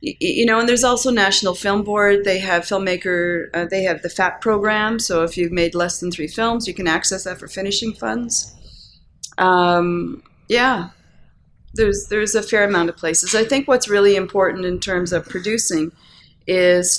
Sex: female